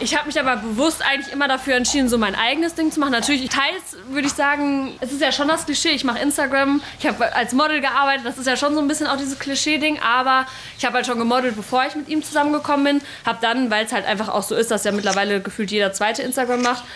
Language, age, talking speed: German, 20-39, 260 wpm